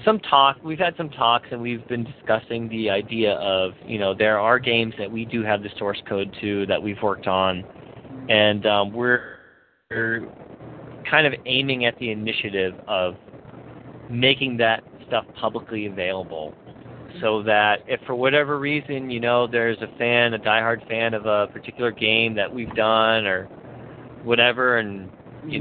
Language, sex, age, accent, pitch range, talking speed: English, male, 40-59, American, 105-125 Hz, 165 wpm